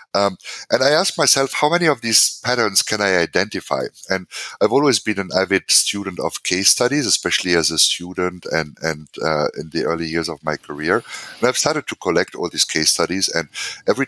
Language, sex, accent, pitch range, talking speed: English, male, German, 85-110 Hz, 205 wpm